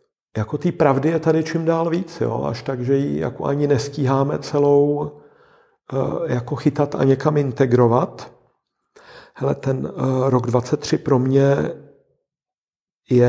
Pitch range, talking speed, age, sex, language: 110-145 Hz, 115 wpm, 50-69, male, Czech